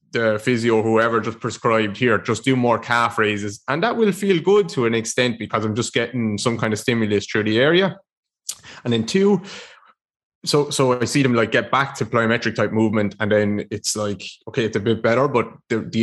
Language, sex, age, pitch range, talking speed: English, male, 20-39, 105-120 Hz, 215 wpm